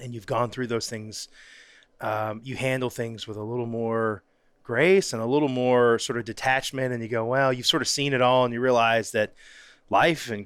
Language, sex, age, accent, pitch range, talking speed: English, male, 30-49, American, 110-130 Hz, 220 wpm